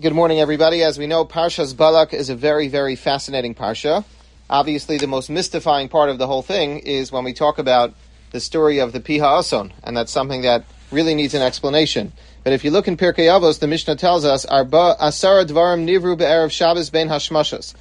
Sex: male